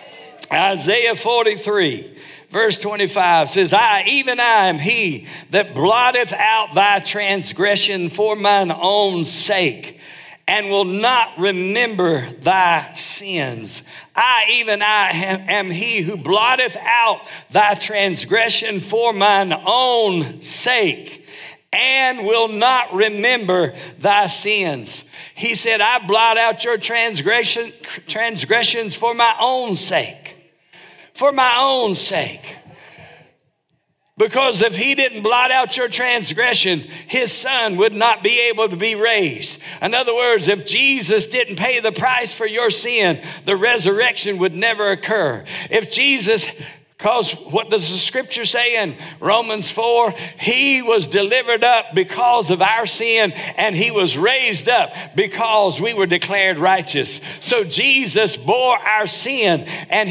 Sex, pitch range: male, 190-235 Hz